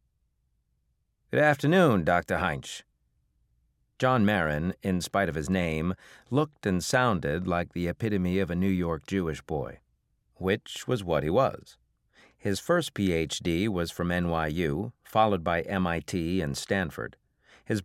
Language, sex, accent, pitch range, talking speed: English, male, American, 75-125 Hz, 135 wpm